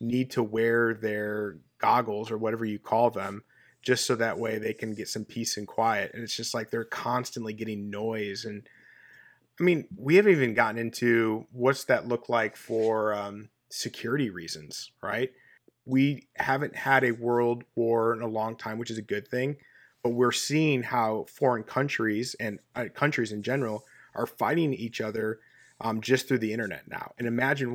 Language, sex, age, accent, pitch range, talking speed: English, male, 30-49, American, 110-130 Hz, 180 wpm